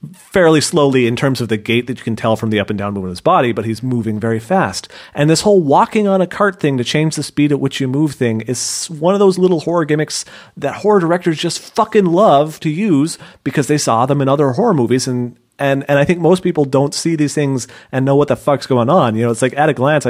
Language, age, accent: English, 30-49, American